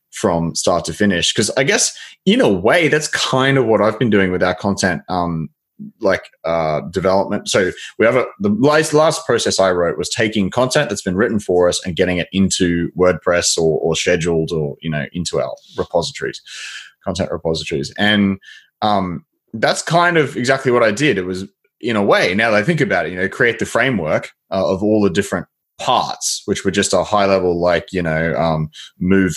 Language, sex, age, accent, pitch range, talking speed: English, male, 20-39, Australian, 85-105 Hz, 200 wpm